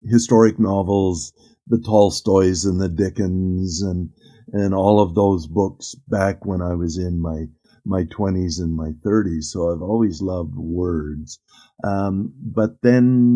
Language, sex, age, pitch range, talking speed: English, male, 50-69, 85-105 Hz, 150 wpm